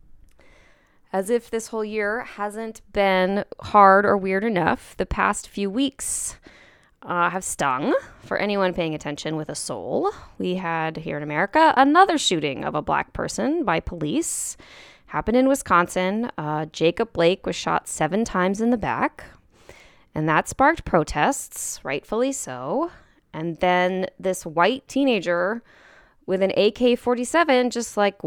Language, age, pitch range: English, 10-29, 190-260 Hz